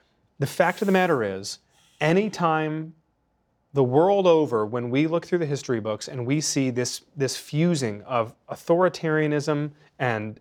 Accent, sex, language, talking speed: American, male, English, 155 wpm